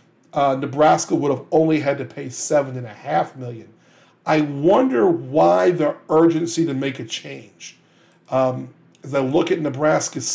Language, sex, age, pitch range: English, male, 50-69, 135-165 Hz